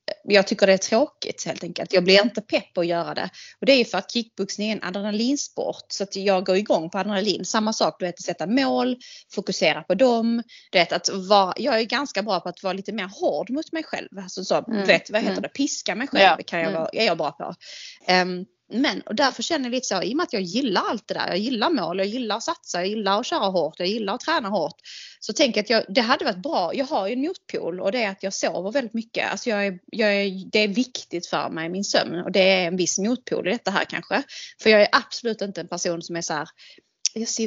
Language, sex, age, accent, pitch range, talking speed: English, female, 20-39, Swedish, 190-250 Hz, 260 wpm